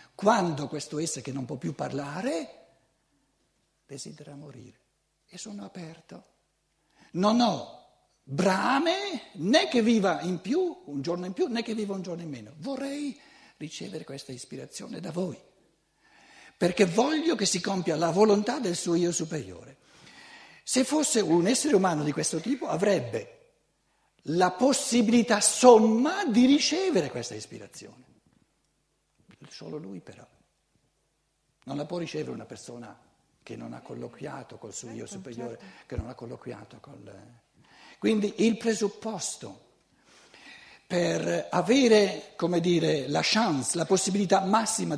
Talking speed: 130 wpm